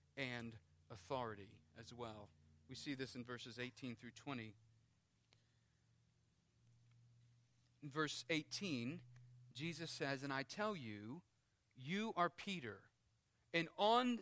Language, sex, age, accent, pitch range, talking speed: English, male, 40-59, American, 125-170 Hz, 110 wpm